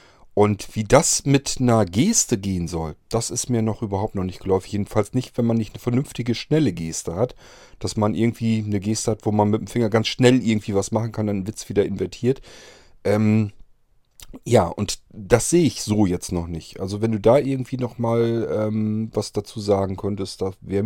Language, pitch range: German, 90-115 Hz